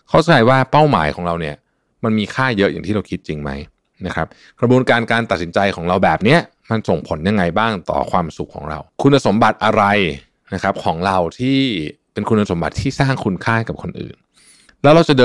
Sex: male